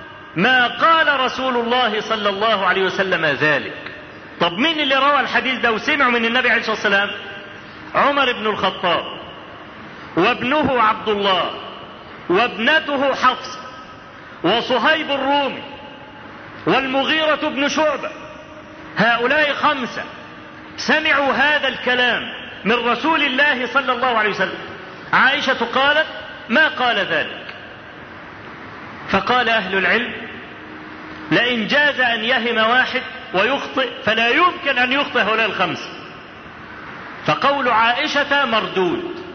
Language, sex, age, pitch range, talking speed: Arabic, male, 40-59, 220-280 Hz, 105 wpm